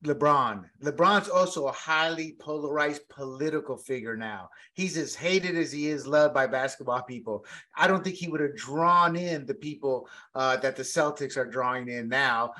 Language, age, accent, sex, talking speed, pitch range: English, 30-49, American, male, 175 wpm, 150-195 Hz